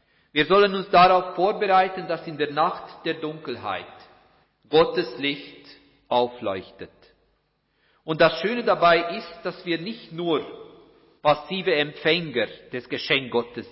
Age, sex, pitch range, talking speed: 50-69, male, 130-175 Hz, 120 wpm